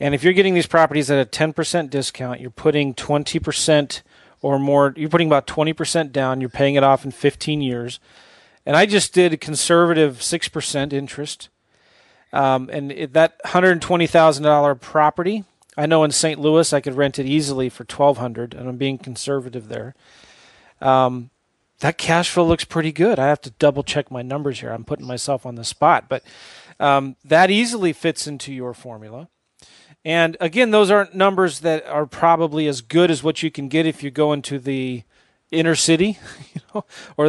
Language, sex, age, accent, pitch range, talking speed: English, male, 30-49, American, 140-165 Hz, 175 wpm